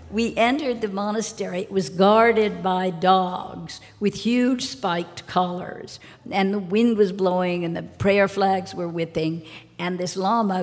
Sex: female